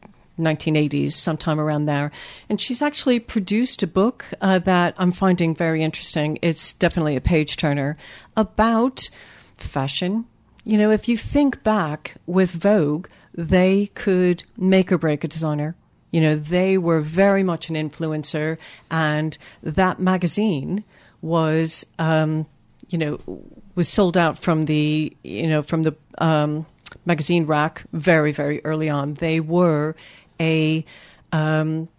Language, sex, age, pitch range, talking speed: English, female, 50-69, 155-190 Hz, 135 wpm